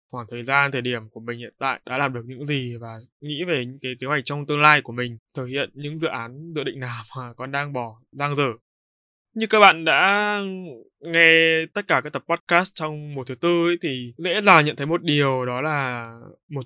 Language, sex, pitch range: Vietnamese, male, 130-165 Hz